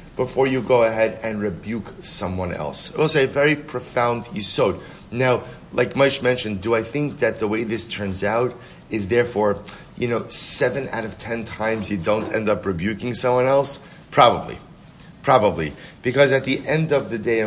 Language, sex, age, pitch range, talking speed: English, male, 30-49, 100-135 Hz, 180 wpm